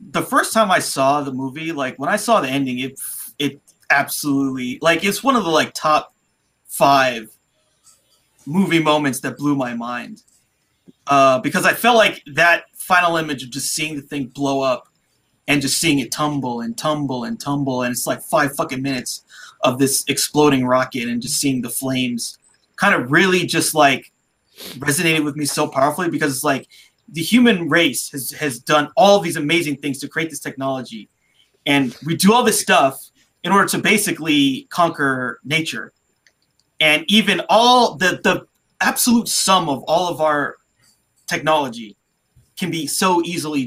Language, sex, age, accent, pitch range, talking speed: English, male, 30-49, American, 135-175 Hz, 175 wpm